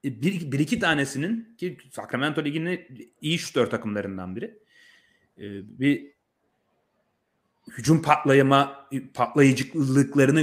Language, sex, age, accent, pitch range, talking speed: Turkish, male, 30-49, native, 120-175 Hz, 85 wpm